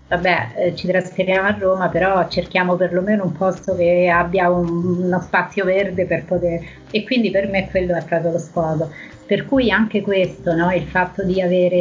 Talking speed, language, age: 190 wpm, Italian, 30-49